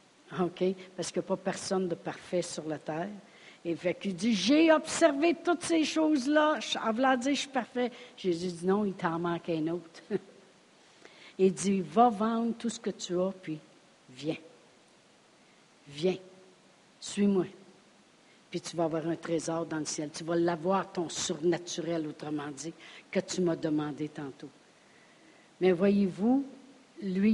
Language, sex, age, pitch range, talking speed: French, female, 60-79, 175-215 Hz, 165 wpm